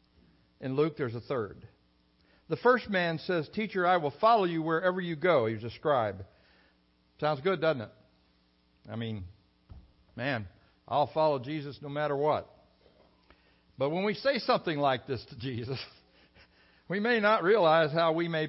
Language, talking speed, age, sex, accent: English, 160 wpm, 60-79, male, American